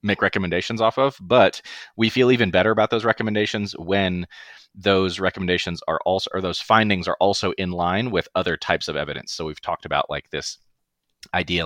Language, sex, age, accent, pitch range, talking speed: English, male, 30-49, American, 80-100 Hz, 185 wpm